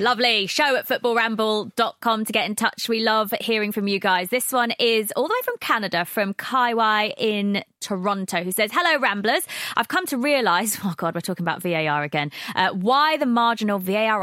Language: English